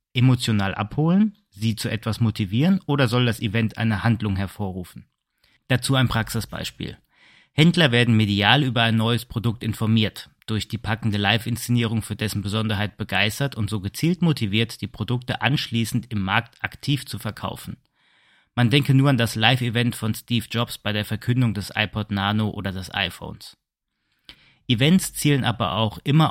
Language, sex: German, male